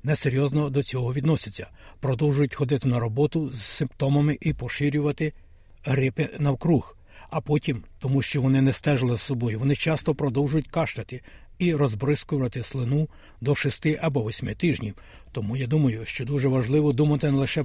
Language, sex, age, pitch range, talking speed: Ukrainian, male, 60-79, 120-145 Hz, 150 wpm